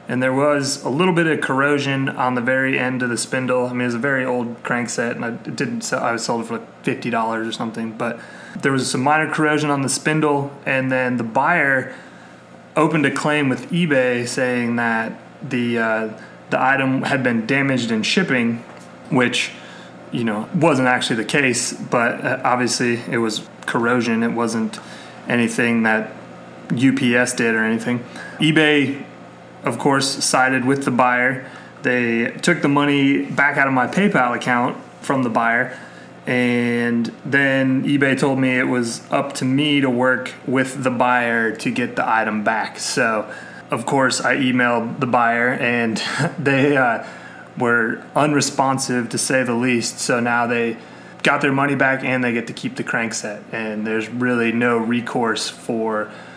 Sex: male